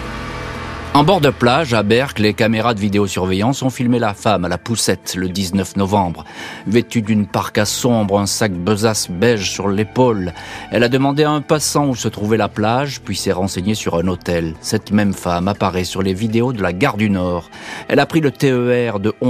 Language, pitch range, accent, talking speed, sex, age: French, 100-125 Hz, French, 200 wpm, male, 40-59